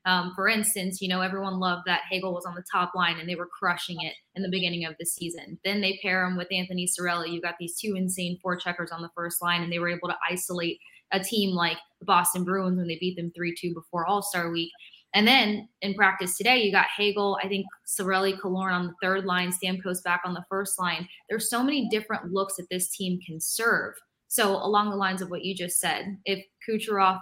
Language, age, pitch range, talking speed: English, 20-39, 175-195 Hz, 235 wpm